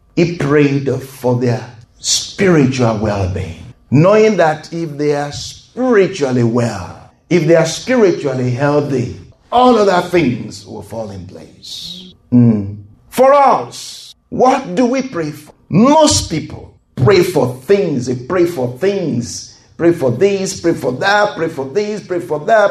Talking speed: 145 wpm